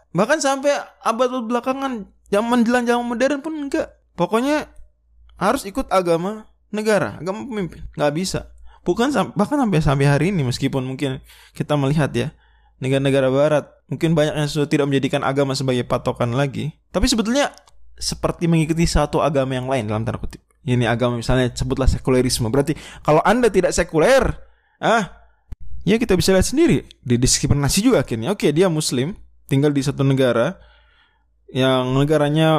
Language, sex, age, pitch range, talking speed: Indonesian, male, 20-39, 130-205 Hz, 150 wpm